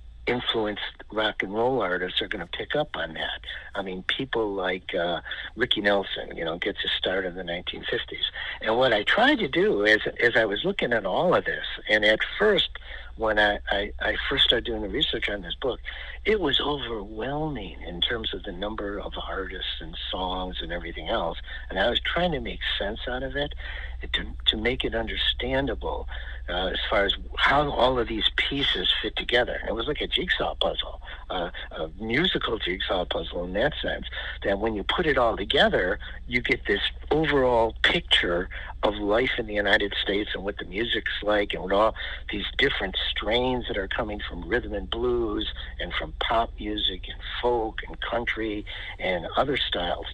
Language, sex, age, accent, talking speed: English, male, 60-79, American, 190 wpm